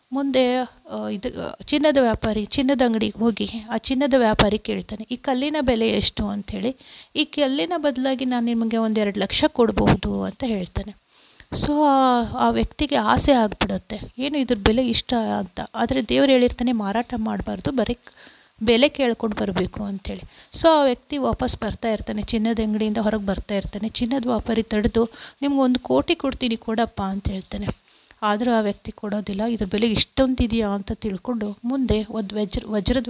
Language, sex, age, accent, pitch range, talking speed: Kannada, female, 30-49, native, 210-255 Hz, 140 wpm